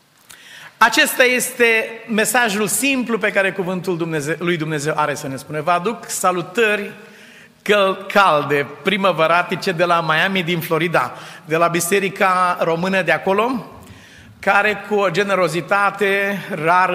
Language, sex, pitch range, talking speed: Romanian, male, 175-205 Hz, 120 wpm